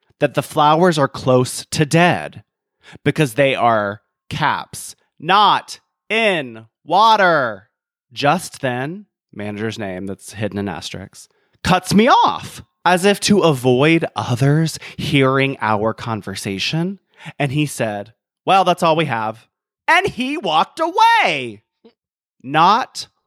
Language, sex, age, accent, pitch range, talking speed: English, male, 30-49, American, 115-185 Hz, 120 wpm